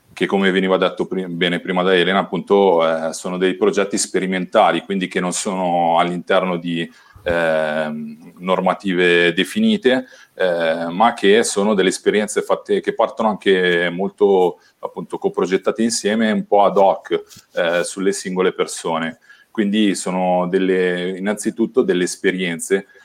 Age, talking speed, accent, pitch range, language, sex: 40-59, 135 wpm, native, 85-100 Hz, Italian, male